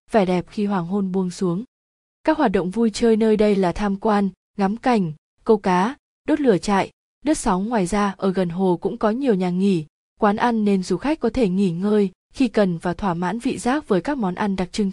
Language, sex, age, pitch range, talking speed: Vietnamese, female, 20-39, 185-230 Hz, 235 wpm